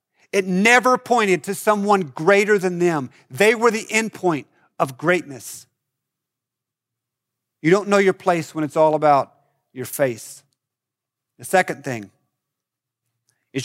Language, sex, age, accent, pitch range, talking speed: English, male, 40-59, American, 135-190 Hz, 125 wpm